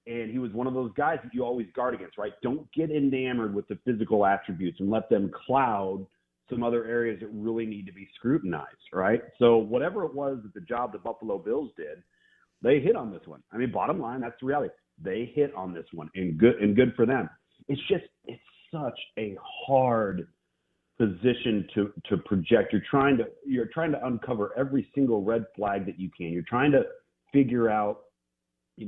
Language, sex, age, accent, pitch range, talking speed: English, male, 40-59, American, 95-125 Hz, 205 wpm